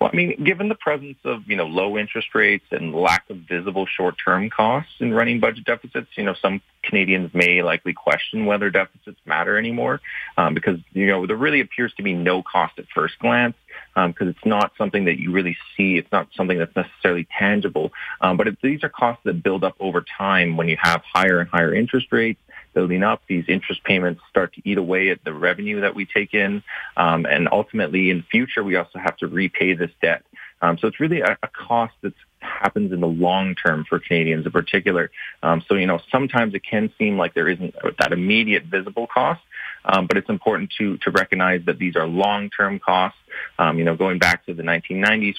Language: English